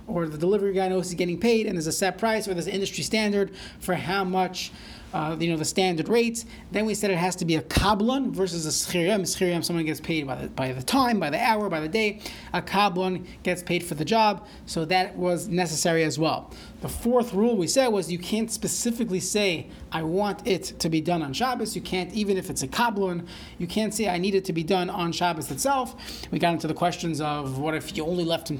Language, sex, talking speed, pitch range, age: English, male, 245 wpm, 165-205 Hz, 30-49